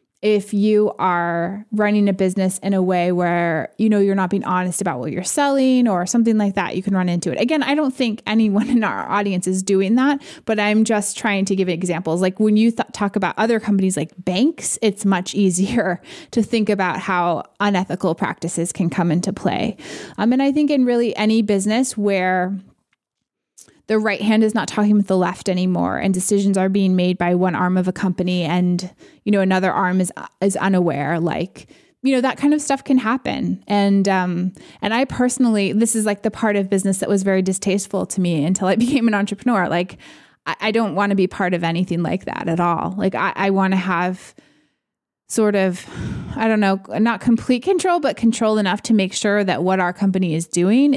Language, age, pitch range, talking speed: English, 20-39, 180-220 Hz, 210 wpm